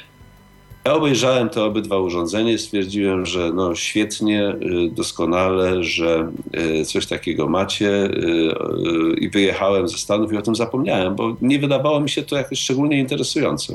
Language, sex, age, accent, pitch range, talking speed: Polish, male, 50-69, native, 90-125 Hz, 135 wpm